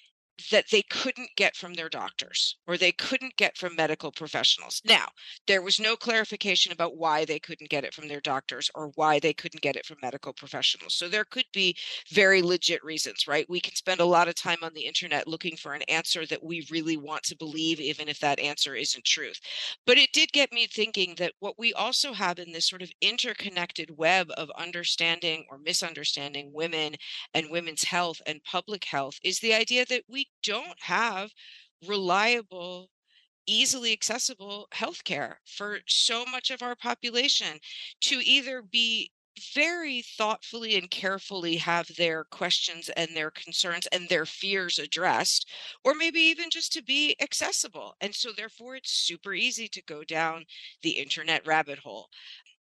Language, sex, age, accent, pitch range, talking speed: English, female, 40-59, American, 160-225 Hz, 175 wpm